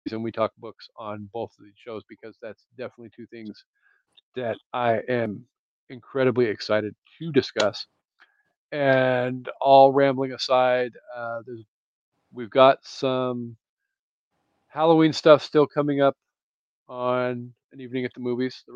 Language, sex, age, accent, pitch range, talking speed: English, male, 40-59, American, 115-135 Hz, 135 wpm